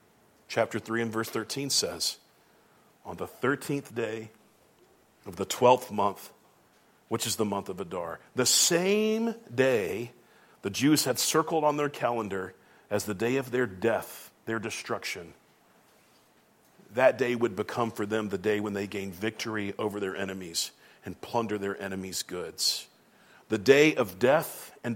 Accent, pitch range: American, 115-160 Hz